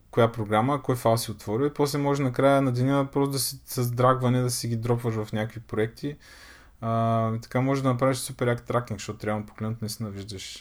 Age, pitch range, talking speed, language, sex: 20-39, 110-140 Hz, 220 wpm, Bulgarian, male